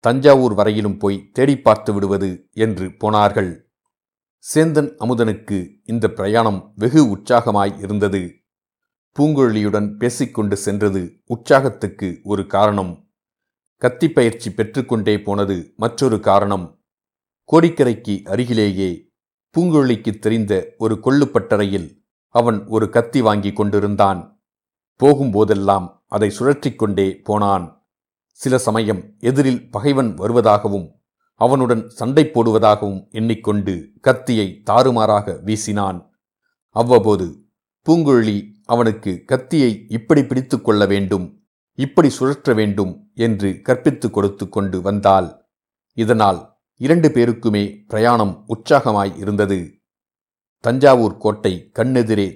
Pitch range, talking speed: 100-125 Hz, 85 wpm